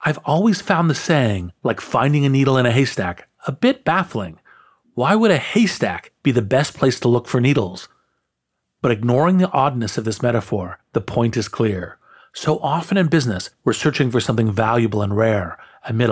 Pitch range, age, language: 110-140 Hz, 40-59, English